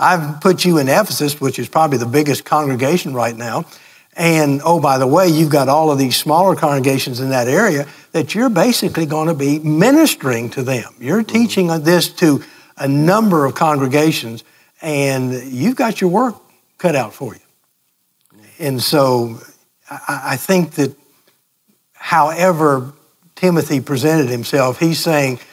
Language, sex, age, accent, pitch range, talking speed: English, male, 60-79, American, 135-170 Hz, 155 wpm